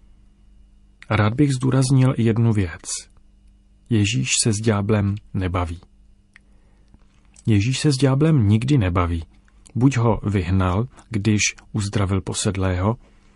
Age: 40-59